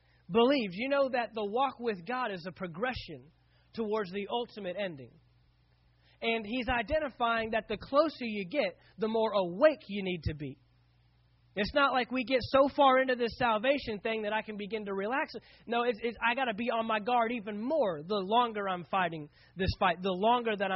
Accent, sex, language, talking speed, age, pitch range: American, male, English, 190 wpm, 30-49, 185-255 Hz